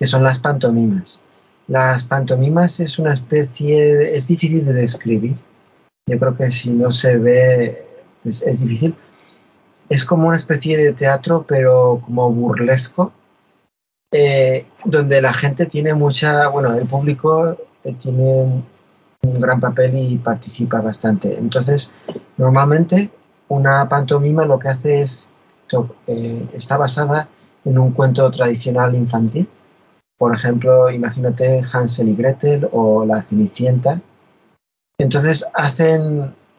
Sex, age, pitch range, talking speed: male, 40-59, 125-150 Hz, 125 wpm